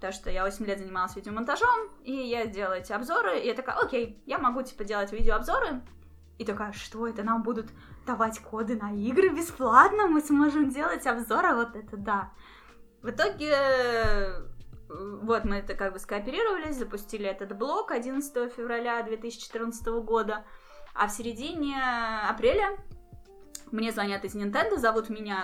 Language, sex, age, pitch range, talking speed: Russian, female, 20-39, 210-270 Hz, 150 wpm